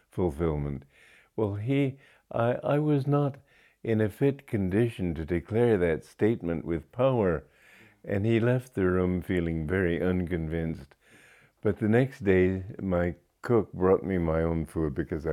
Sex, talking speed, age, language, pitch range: male, 145 wpm, 50-69, English, 85-110 Hz